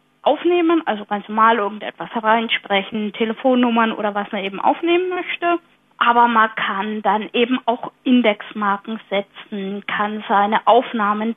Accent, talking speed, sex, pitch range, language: German, 125 wpm, female, 205-255 Hz, German